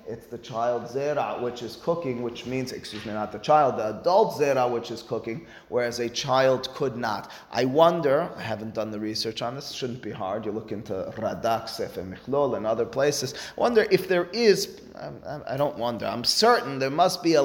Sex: male